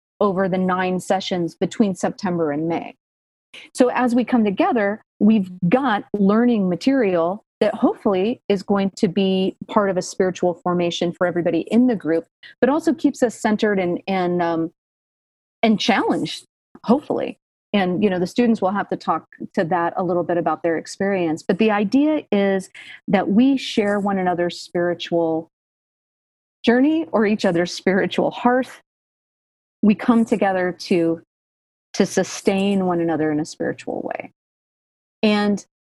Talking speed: 150 wpm